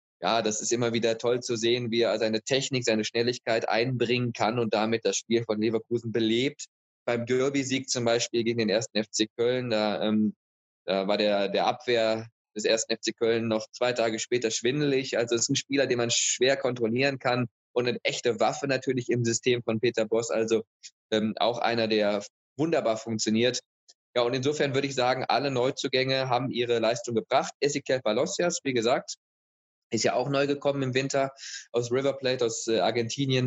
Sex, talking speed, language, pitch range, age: male, 185 wpm, Persian, 110-130 Hz, 20-39